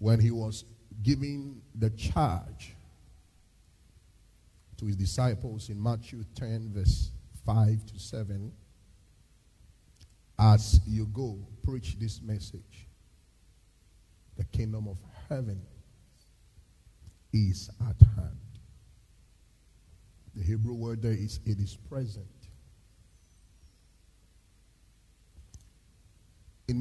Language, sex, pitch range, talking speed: English, male, 90-115 Hz, 85 wpm